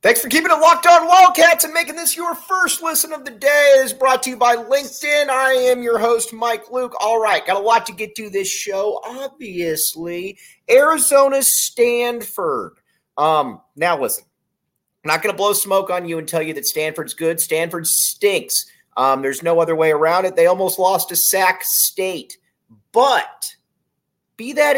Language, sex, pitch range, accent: English, male, 155-255 Hz, American